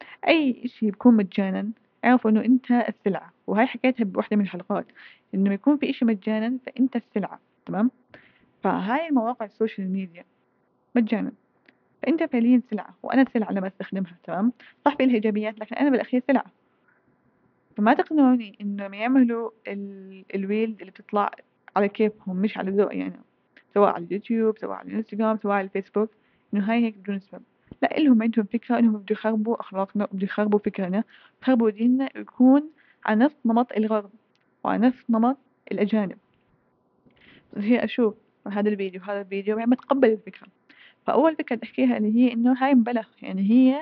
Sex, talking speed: female, 155 wpm